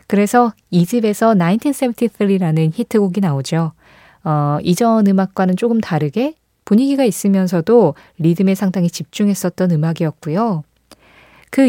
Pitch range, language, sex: 160-230 Hz, Korean, female